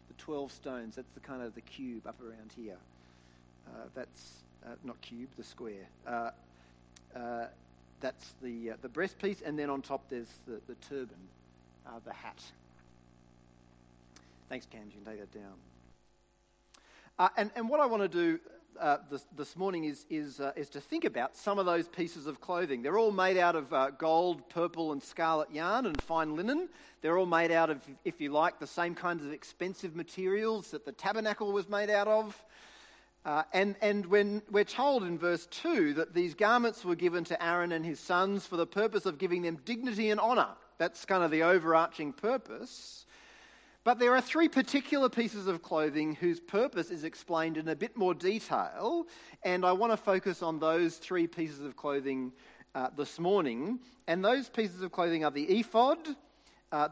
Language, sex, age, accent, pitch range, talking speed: English, male, 40-59, Australian, 140-200 Hz, 190 wpm